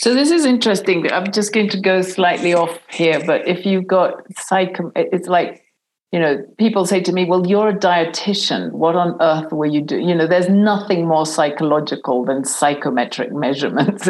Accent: British